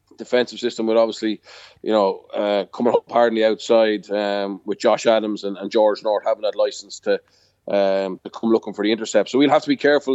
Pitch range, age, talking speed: 105-120 Hz, 20-39, 225 wpm